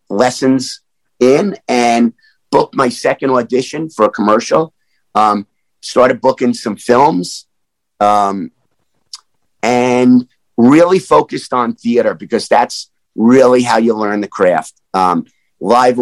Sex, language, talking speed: male, English, 115 wpm